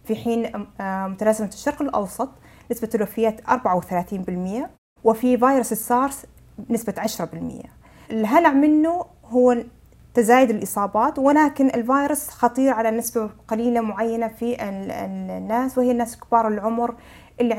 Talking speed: 110 wpm